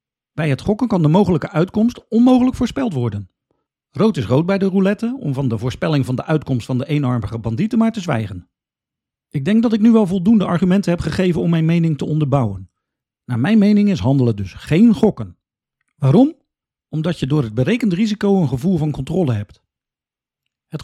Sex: male